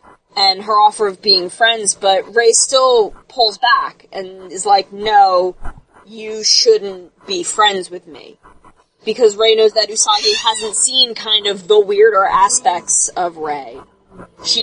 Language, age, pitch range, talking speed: English, 20-39, 195-280 Hz, 150 wpm